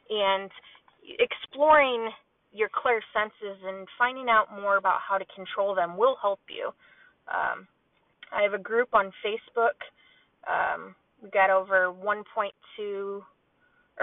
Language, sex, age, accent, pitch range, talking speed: English, female, 20-39, American, 195-230 Hz, 125 wpm